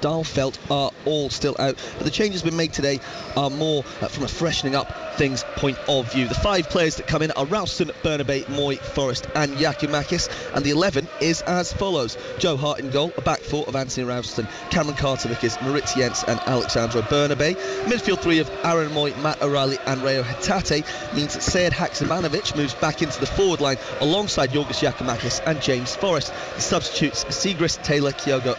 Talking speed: 185 wpm